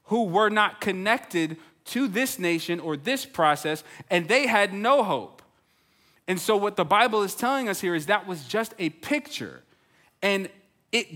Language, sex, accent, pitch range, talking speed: English, male, American, 155-215 Hz, 170 wpm